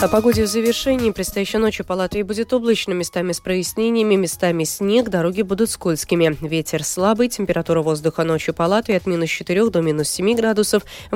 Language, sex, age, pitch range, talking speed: Russian, female, 20-39, 160-210 Hz, 165 wpm